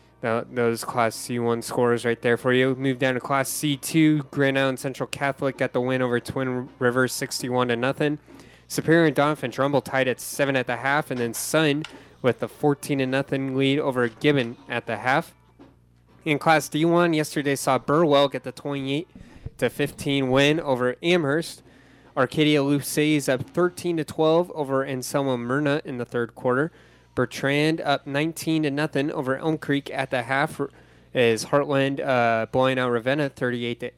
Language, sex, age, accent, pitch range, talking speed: English, male, 20-39, American, 125-145 Hz, 180 wpm